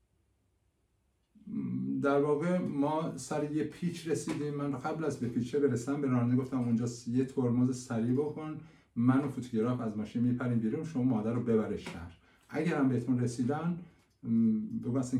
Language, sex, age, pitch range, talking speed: Persian, male, 50-69, 110-135 Hz, 145 wpm